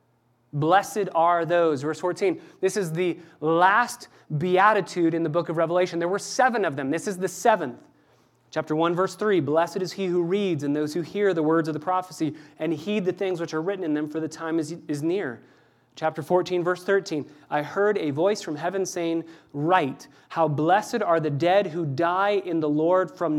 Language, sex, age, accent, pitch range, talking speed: English, male, 30-49, American, 150-185 Hz, 205 wpm